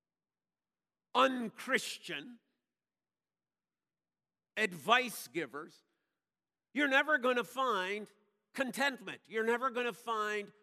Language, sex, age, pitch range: English, male, 50-69, 175-255 Hz